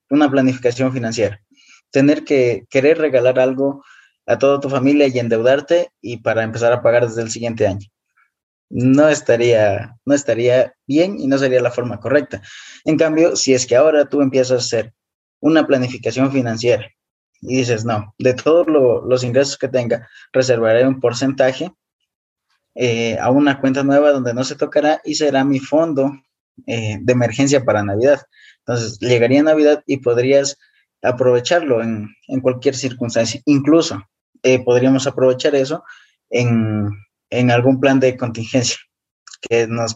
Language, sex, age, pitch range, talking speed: Spanish, male, 20-39, 120-140 Hz, 150 wpm